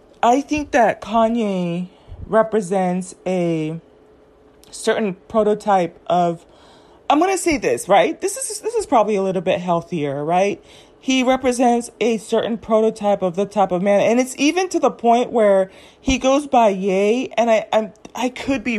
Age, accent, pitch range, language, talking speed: 30-49, American, 175-230 Hz, English, 165 wpm